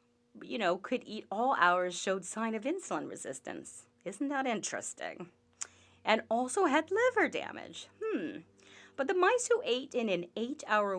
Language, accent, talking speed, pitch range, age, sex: English, American, 160 wpm, 175-265 Hz, 30-49, female